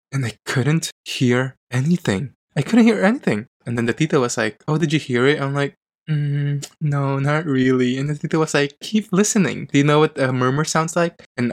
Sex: male